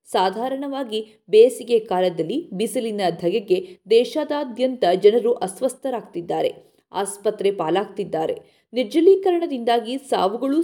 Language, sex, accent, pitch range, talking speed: Kannada, female, native, 205-330 Hz, 70 wpm